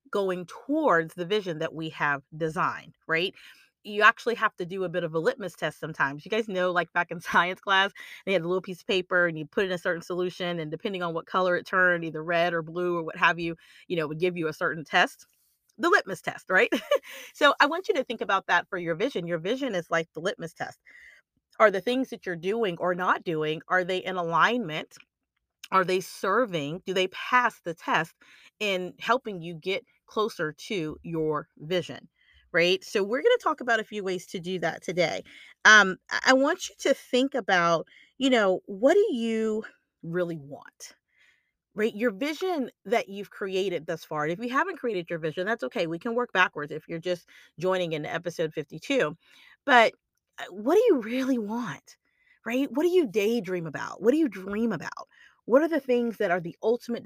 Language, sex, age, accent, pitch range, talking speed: English, female, 30-49, American, 170-230 Hz, 205 wpm